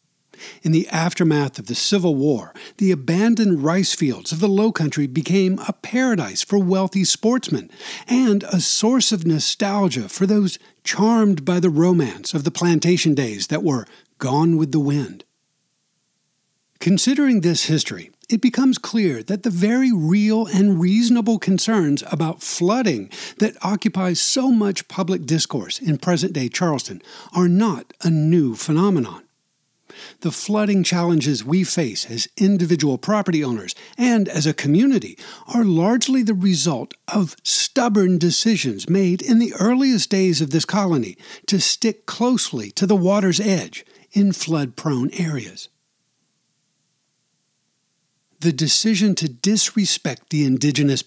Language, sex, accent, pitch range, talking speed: English, male, American, 160-210 Hz, 135 wpm